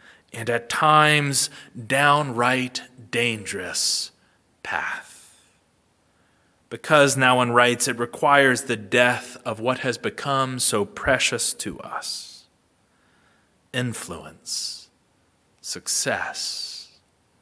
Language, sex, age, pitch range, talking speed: English, male, 30-49, 110-140 Hz, 85 wpm